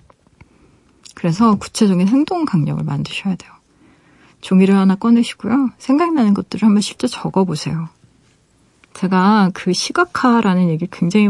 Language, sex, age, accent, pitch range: Korean, female, 40-59, native, 180-230 Hz